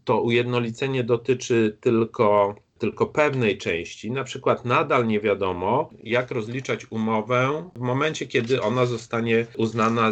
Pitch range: 100-130 Hz